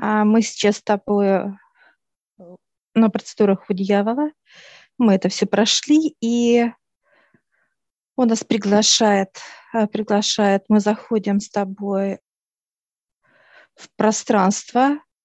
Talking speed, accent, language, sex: 90 wpm, native, Russian, female